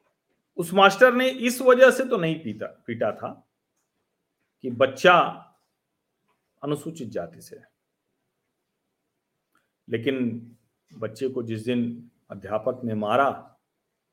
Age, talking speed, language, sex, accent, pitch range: 40-59, 105 wpm, Hindi, male, native, 120-185 Hz